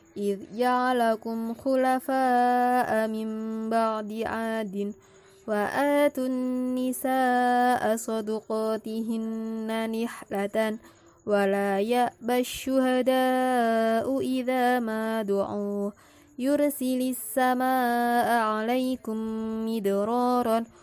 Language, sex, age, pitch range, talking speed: Indonesian, female, 20-39, 220-250 Hz, 50 wpm